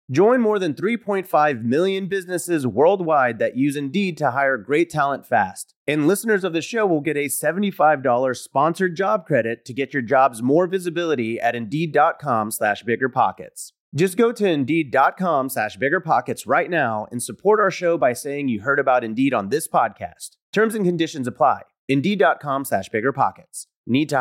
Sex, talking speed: male, 160 wpm